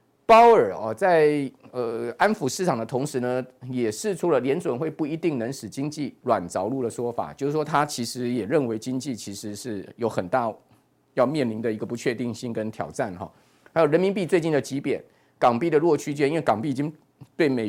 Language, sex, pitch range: Chinese, male, 115-150 Hz